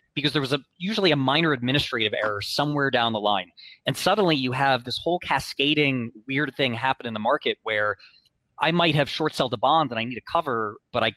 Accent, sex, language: American, male, English